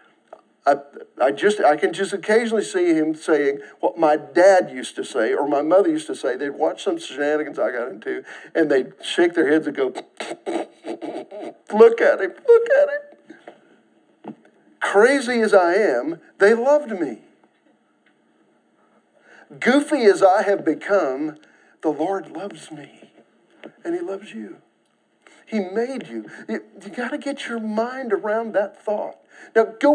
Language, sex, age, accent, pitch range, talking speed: English, male, 50-69, American, 195-310 Hz, 155 wpm